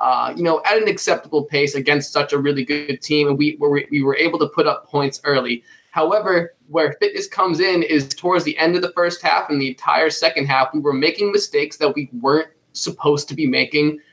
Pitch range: 140-160 Hz